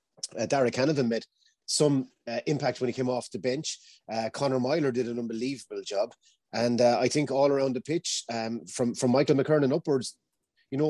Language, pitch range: English, 115-145 Hz